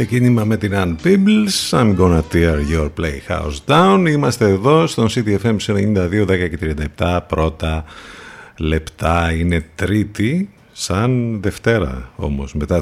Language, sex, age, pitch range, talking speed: Greek, male, 50-69, 85-115 Hz, 125 wpm